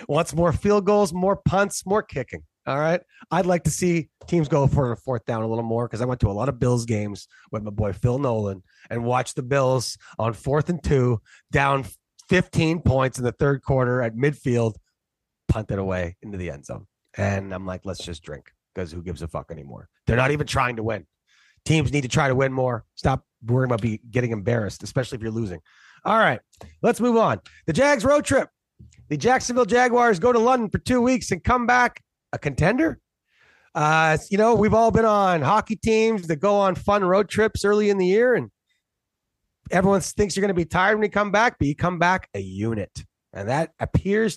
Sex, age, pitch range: male, 30-49, 115-190 Hz